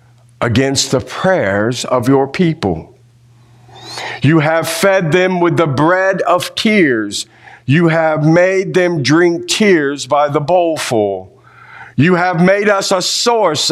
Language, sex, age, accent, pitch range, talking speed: English, male, 50-69, American, 120-175 Hz, 130 wpm